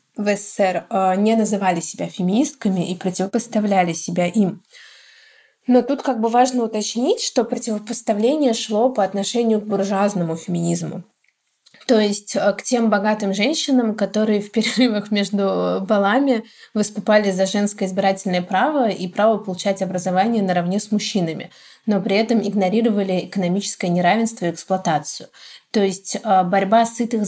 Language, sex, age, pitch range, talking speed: Russian, female, 20-39, 190-230 Hz, 130 wpm